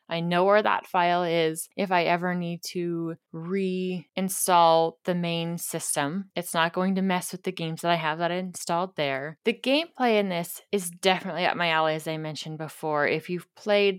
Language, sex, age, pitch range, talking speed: English, female, 20-39, 165-190 Hz, 195 wpm